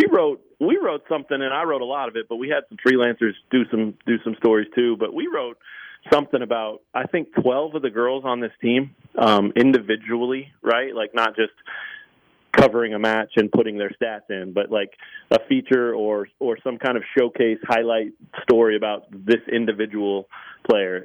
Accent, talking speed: American, 190 wpm